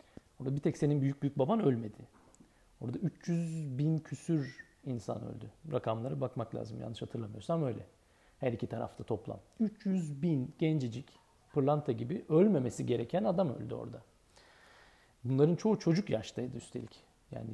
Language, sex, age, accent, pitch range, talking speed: Turkish, male, 40-59, native, 120-165 Hz, 135 wpm